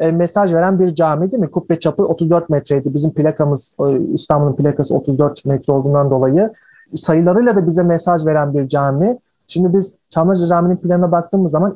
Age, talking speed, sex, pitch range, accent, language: 40-59, 165 wpm, male, 155-195 Hz, native, Turkish